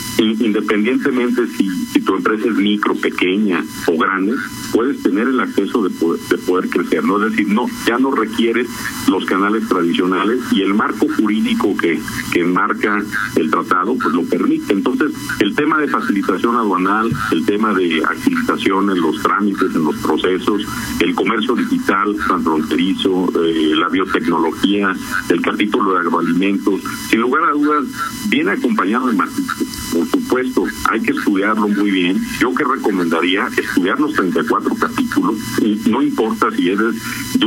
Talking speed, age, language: 150 wpm, 50-69, Spanish